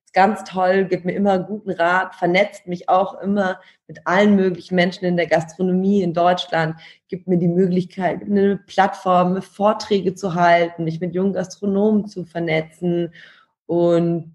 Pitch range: 165-195 Hz